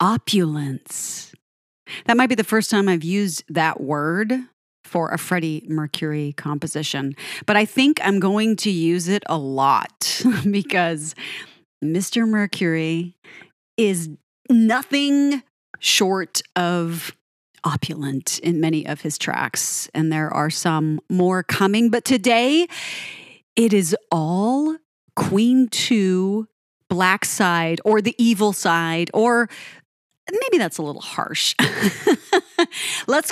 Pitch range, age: 160-220 Hz, 30-49